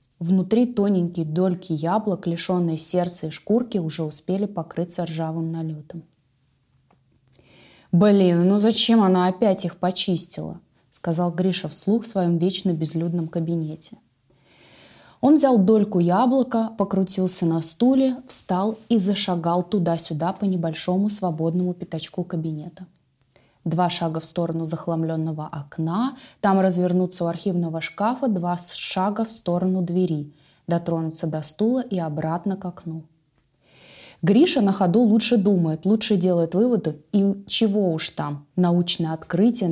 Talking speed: 120 wpm